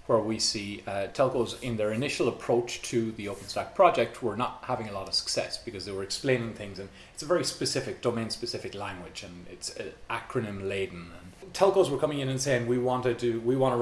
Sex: male